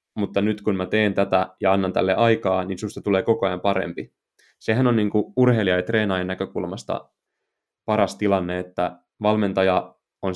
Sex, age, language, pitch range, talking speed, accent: male, 20-39, Finnish, 95-110 Hz, 160 wpm, native